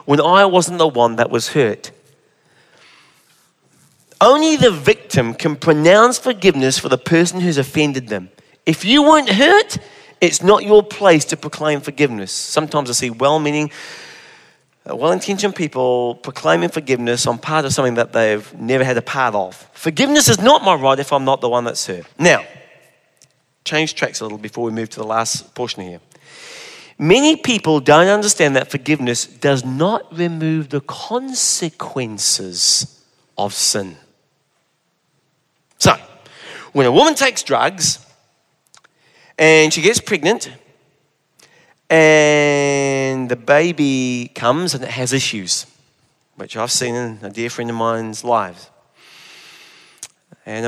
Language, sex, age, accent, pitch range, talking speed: English, male, 30-49, British, 120-175 Hz, 140 wpm